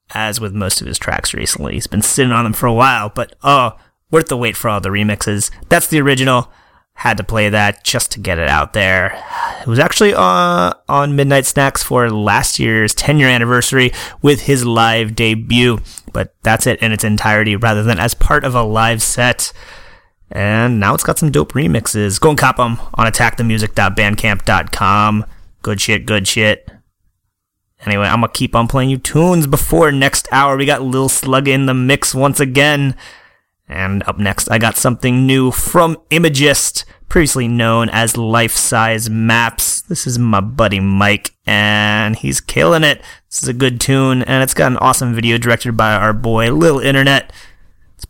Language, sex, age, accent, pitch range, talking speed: English, male, 30-49, American, 105-135 Hz, 185 wpm